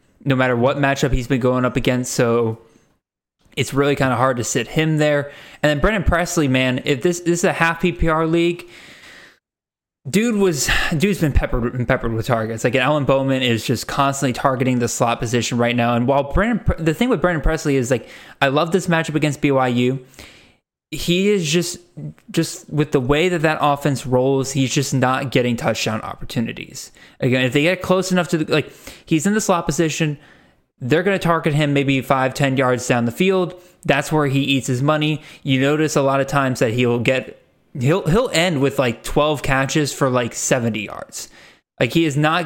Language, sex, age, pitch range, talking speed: English, male, 20-39, 130-160 Hz, 200 wpm